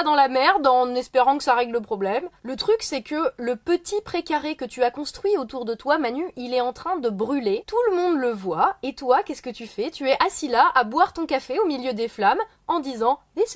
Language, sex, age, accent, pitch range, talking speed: French, female, 20-39, French, 240-340 Hz, 250 wpm